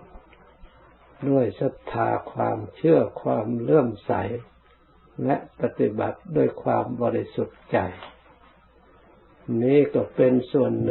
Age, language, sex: 60-79, Thai, male